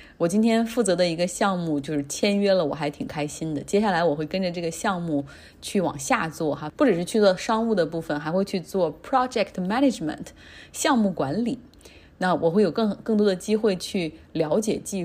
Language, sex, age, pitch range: Chinese, female, 20-39, 165-220 Hz